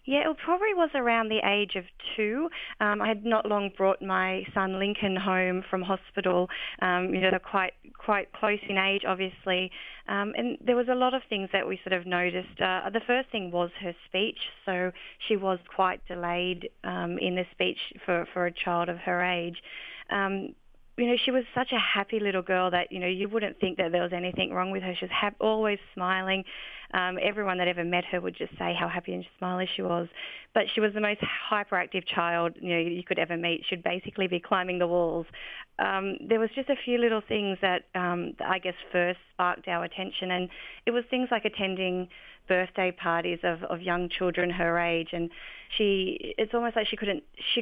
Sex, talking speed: female, 210 wpm